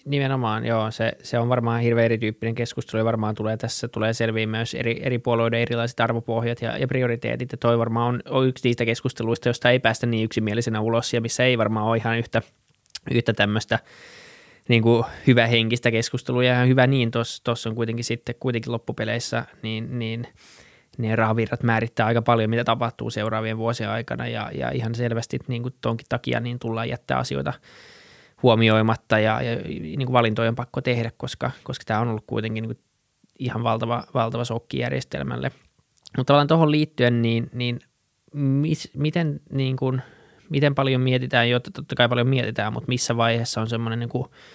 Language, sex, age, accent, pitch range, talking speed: Finnish, male, 20-39, native, 115-125 Hz, 180 wpm